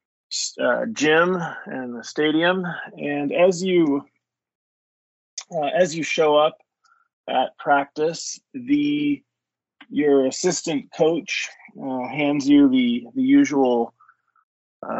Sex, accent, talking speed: male, American, 100 wpm